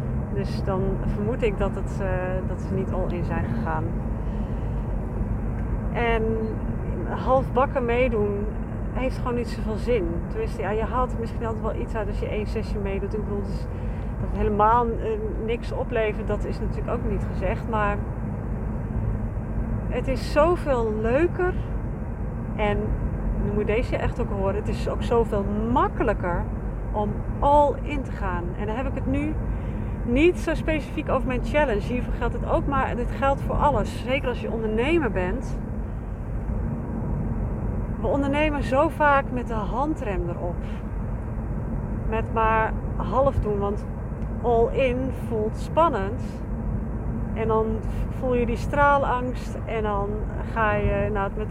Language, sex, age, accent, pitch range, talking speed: Dutch, female, 40-59, Dutch, 105-120 Hz, 145 wpm